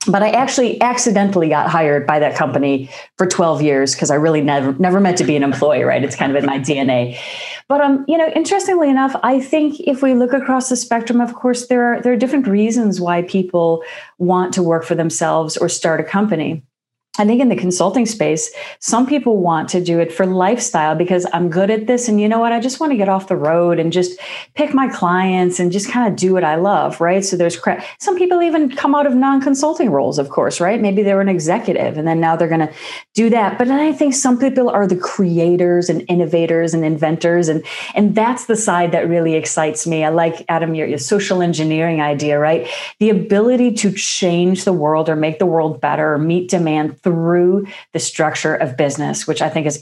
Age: 40-59